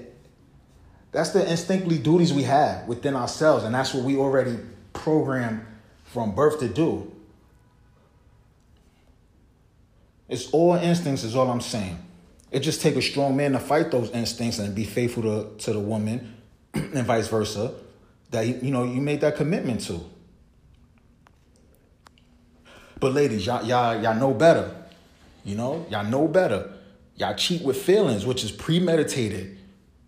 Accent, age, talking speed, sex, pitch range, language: American, 30-49, 145 wpm, male, 90-140 Hz, English